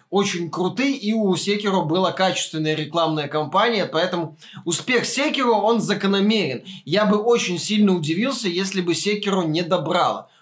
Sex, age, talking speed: male, 20-39, 140 wpm